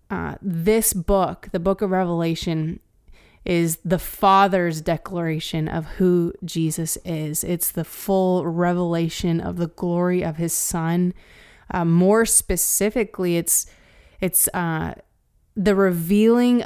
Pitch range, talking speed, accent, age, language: 170-195 Hz, 120 wpm, American, 20-39, English